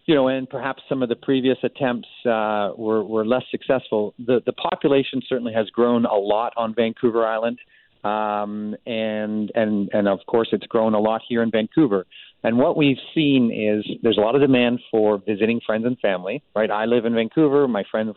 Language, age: English, 40-59